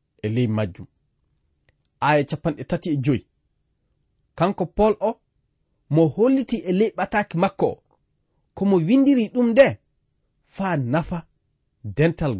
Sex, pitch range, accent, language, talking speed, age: male, 135-195 Hz, South African, English, 95 wpm, 40-59